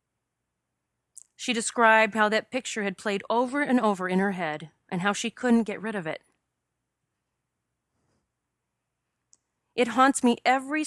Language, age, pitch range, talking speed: English, 30-49, 185-235 Hz, 140 wpm